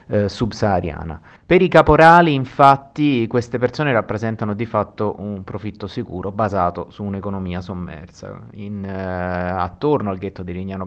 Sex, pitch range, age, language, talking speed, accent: male, 95-115 Hz, 30-49, Italian, 140 wpm, native